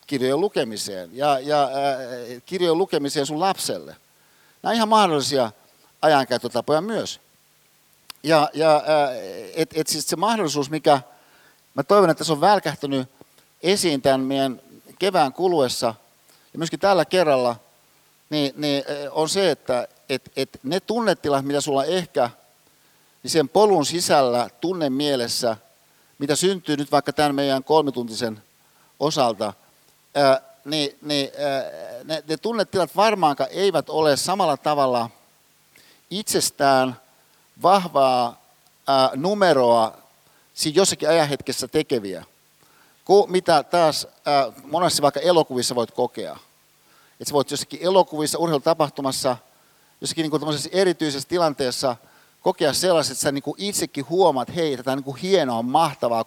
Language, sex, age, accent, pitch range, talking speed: Finnish, male, 50-69, native, 135-165 Hz, 120 wpm